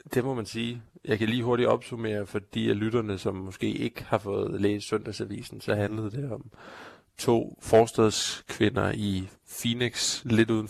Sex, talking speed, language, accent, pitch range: male, 165 wpm, Danish, native, 100-110 Hz